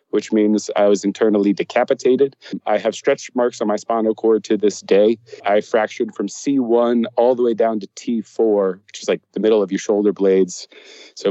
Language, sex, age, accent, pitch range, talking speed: English, male, 30-49, American, 105-130 Hz, 195 wpm